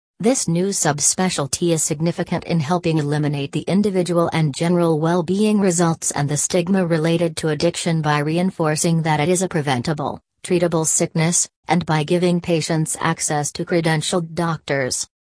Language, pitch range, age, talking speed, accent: English, 150-175 Hz, 40-59, 145 wpm, American